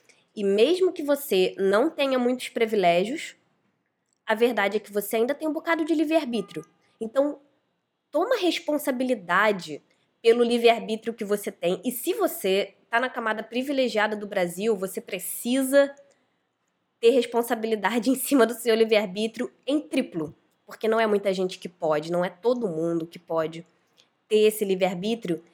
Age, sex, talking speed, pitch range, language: 20-39, female, 150 wpm, 180-235 Hz, Portuguese